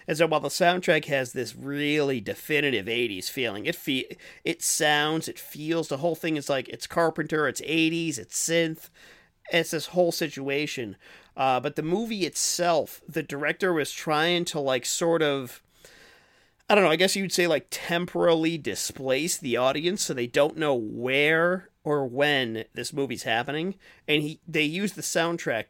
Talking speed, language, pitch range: 170 wpm, English, 130-165 Hz